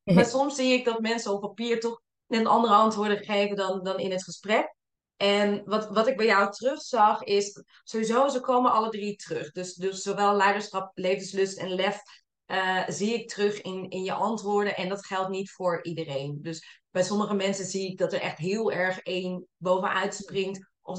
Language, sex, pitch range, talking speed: Dutch, female, 180-205 Hz, 195 wpm